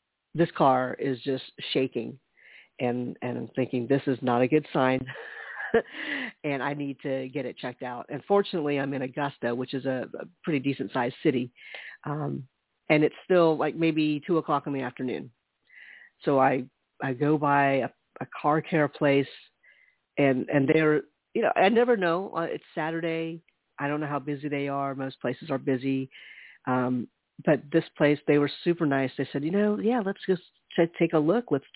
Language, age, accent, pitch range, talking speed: English, 40-59, American, 130-155 Hz, 185 wpm